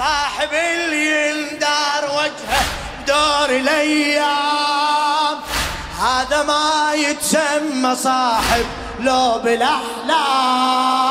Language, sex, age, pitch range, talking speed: Arabic, male, 30-49, 245-295 Hz, 95 wpm